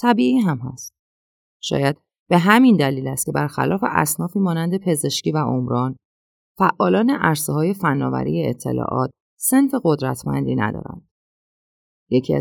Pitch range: 125-175 Hz